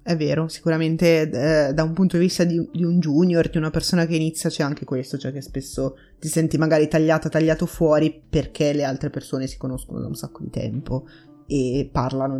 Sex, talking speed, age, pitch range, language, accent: female, 210 wpm, 20-39, 150-170 Hz, Italian, native